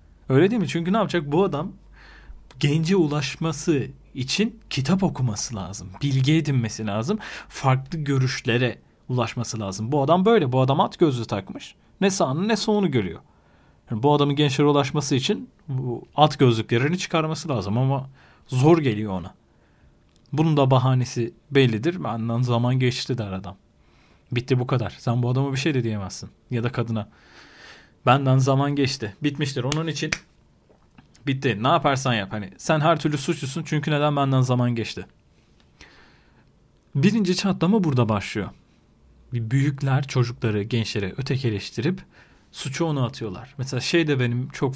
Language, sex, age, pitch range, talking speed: Turkish, male, 40-59, 120-155 Hz, 145 wpm